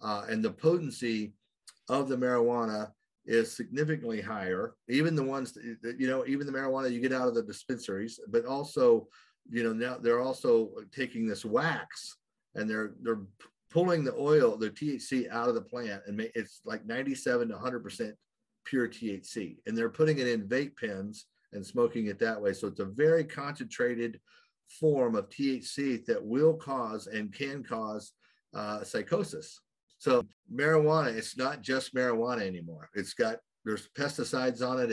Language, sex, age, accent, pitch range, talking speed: English, male, 50-69, American, 105-140 Hz, 165 wpm